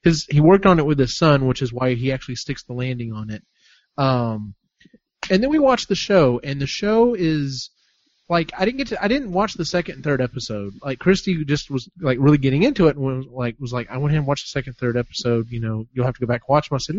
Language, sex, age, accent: English, male, 30-49, American